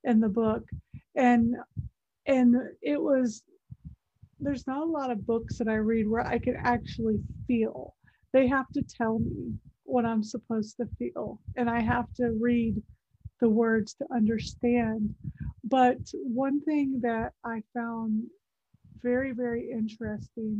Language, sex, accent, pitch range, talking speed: English, female, American, 225-250 Hz, 145 wpm